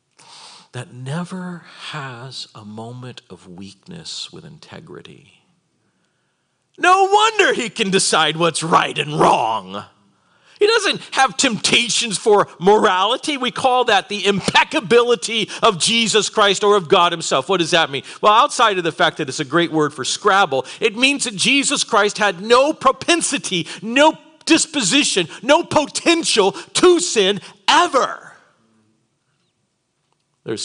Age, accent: 50-69, American